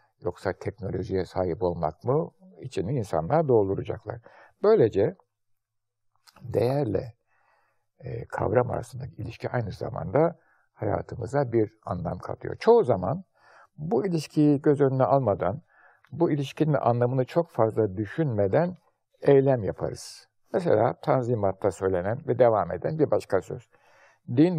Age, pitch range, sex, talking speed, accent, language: 60-79, 105-135 Hz, male, 105 wpm, native, Turkish